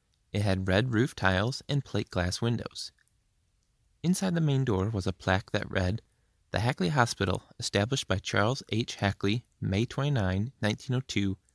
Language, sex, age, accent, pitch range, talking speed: English, male, 20-39, American, 95-125 Hz, 150 wpm